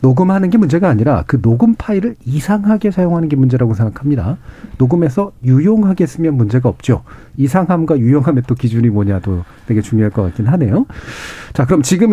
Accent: native